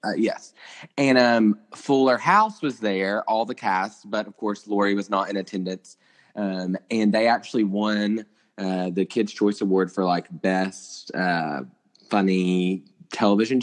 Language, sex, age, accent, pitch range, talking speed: English, male, 20-39, American, 95-125 Hz, 155 wpm